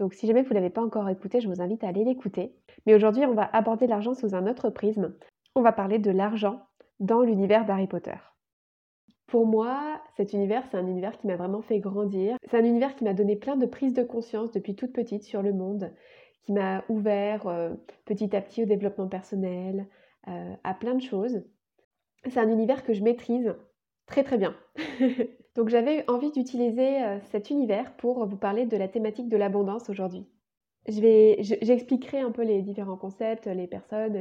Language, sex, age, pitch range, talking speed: French, female, 20-39, 200-240 Hz, 200 wpm